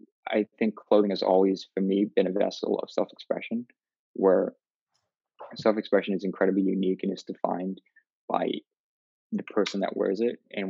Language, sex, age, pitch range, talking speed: English, male, 20-39, 95-105 Hz, 150 wpm